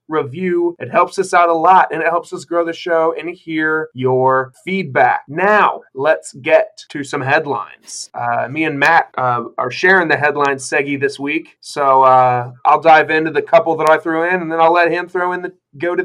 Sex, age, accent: male, 20-39, American